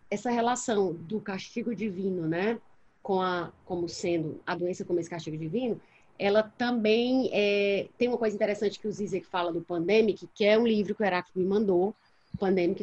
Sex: female